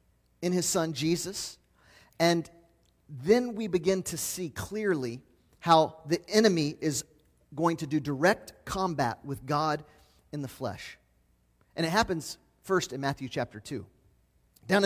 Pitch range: 125-180 Hz